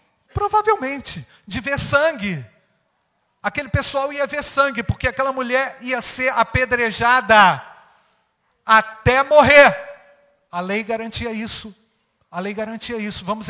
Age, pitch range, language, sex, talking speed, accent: 50-69, 170-235 Hz, Portuguese, male, 115 wpm, Brazilian